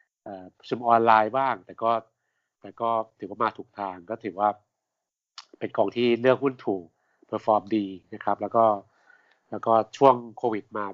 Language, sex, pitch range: Thai, male, 105-125 Hz